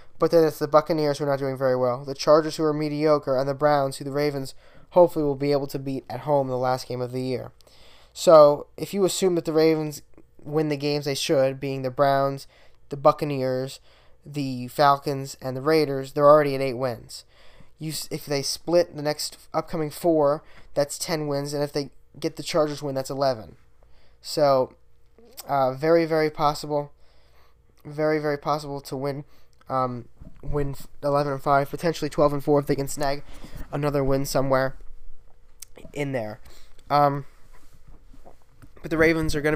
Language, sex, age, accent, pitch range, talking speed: English, male, 10-29, American, 130-150 Hz, 180 wpm